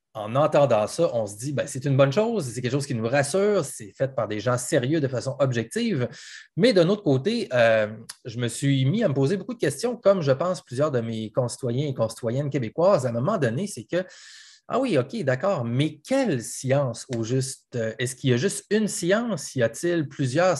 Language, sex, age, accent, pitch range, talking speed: French, male, 30-49, Canadian, 125-170 Hz, 220 wpm